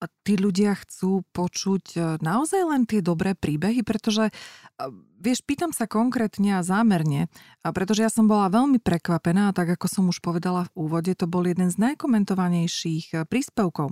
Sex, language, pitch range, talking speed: female, Slovak, 175-215 Hz, 165 wpm